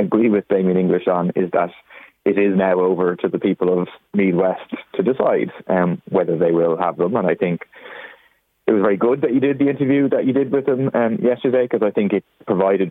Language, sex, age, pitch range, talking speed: English, male, 20-39, 90-115 Hz, 225 wpm